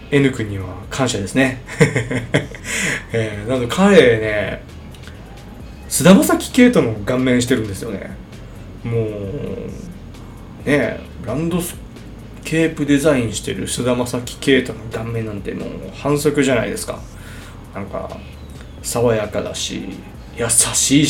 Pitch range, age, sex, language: 105-150 Hz, 20-39, male, Japanese